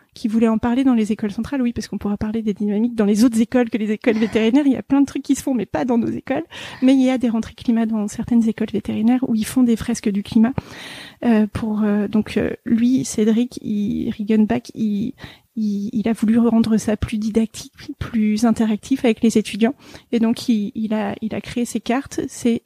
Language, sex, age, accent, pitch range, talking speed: French, female, 30-49, French, 220-245 Hz, 240 wpm